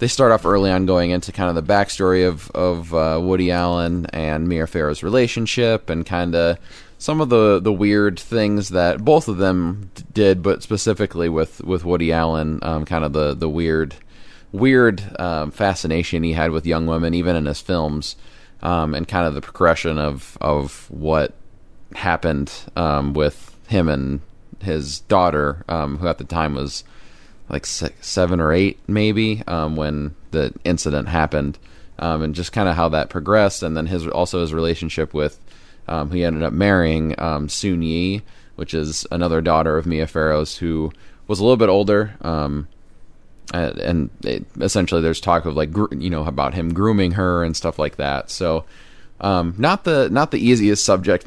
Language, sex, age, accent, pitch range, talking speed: English, male, 30-49, American, 80-95 Hz, 180 wpm